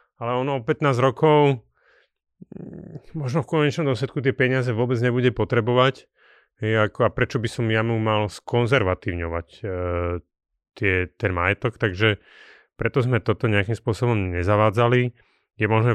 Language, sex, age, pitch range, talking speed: Slovak, male, 30-49, 100-120 Hz, 135 wpm